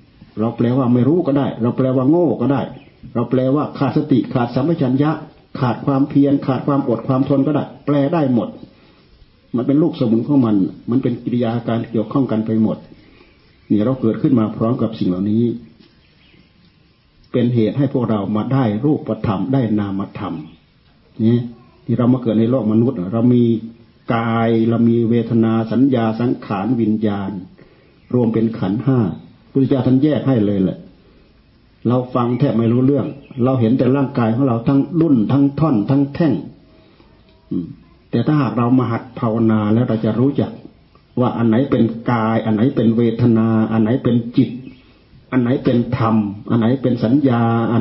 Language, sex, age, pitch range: Thai, male, 60-79, 110-130 Hz